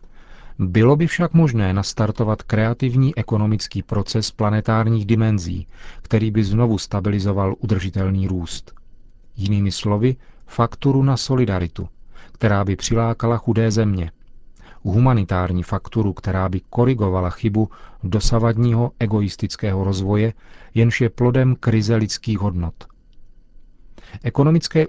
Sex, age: male, 40-59